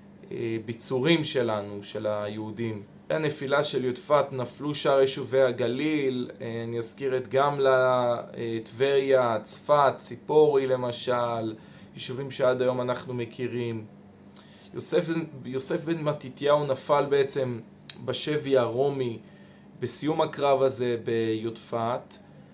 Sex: male